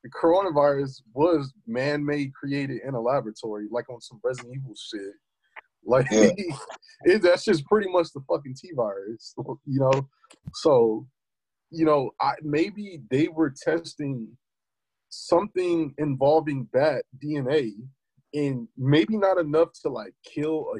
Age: 20-39